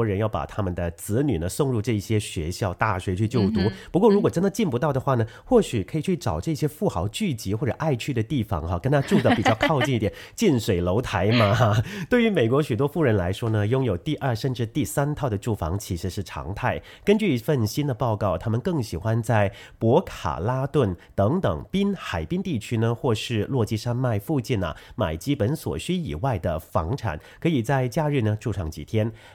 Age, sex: 30-49, male